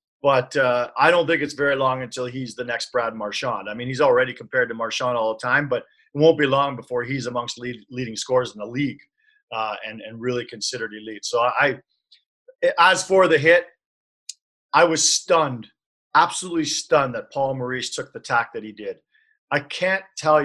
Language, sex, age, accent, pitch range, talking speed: English, male, 40-59, American, 125-160 Hz, 195 wpm